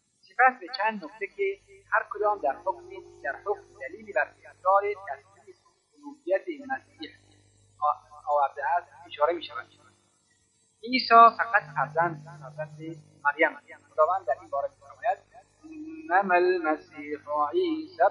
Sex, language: male, Persian